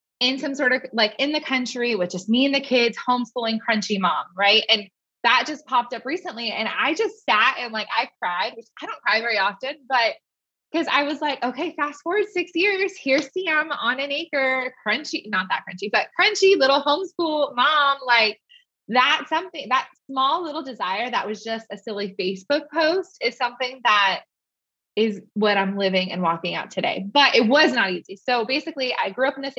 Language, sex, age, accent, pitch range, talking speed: English, female, 20-39, American, 215-290 Hz, 200 wpm